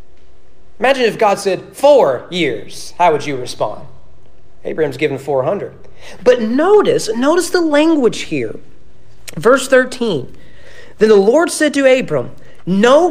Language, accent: English, American